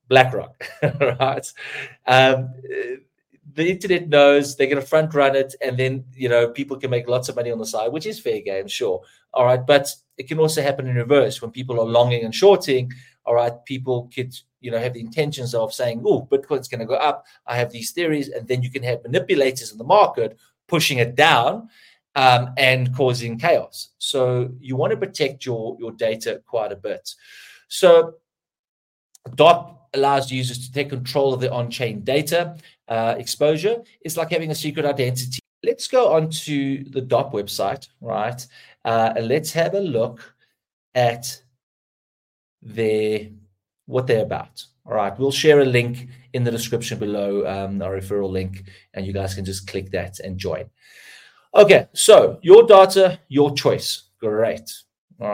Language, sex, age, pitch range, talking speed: English, male, 30-49, 120-155 Hz, 175 wpm